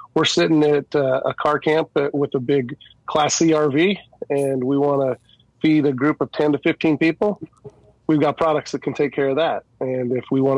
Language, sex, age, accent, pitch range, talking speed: English, male, 30-49, American, 125-145 Hz, 210 wpm